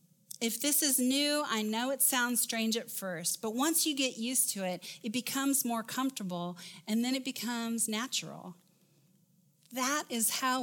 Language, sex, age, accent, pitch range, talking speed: English, female, 40-59, American, 175-240 Hz, 170 wpm